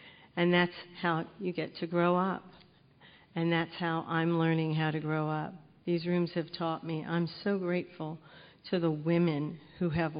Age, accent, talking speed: 50-69, American, 175 wpm